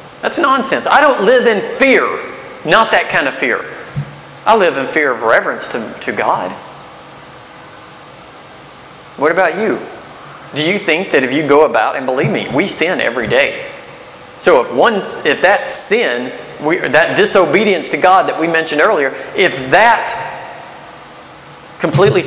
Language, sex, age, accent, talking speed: English, male, 40-59, American, 150 wpm